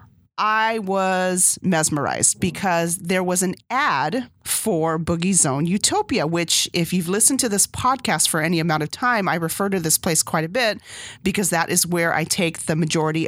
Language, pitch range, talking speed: English, 155-195 Hz, 180 wpm